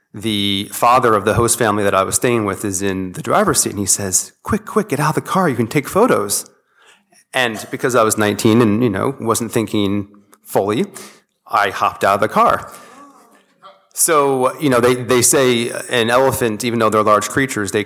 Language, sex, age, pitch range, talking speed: English, male, 30-49, 100-115 Hz, 205 wpm